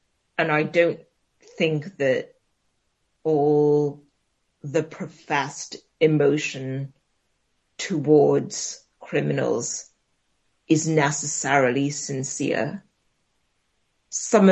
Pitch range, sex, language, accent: 145-170 Hz, female, English, British